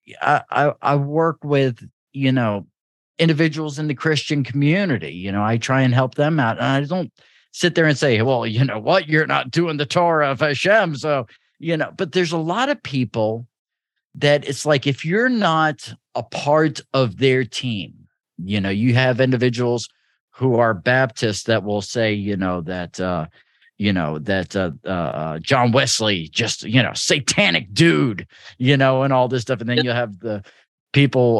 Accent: American